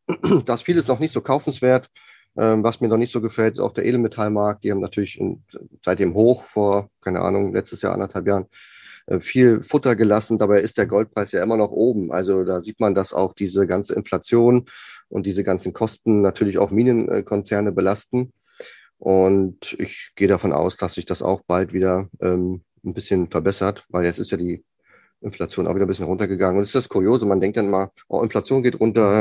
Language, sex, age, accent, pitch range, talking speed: German, male, 30-49, German, 95-110 Hz, 195 wpm